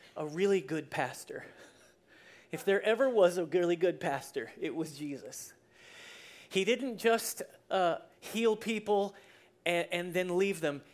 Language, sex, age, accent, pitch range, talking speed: English, male, 30-49, American, 155-205 Hz, 145 wpm